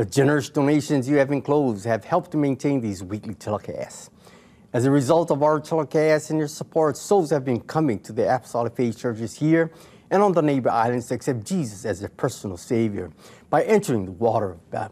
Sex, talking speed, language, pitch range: male, 195 wpm, English, 110-165 Hz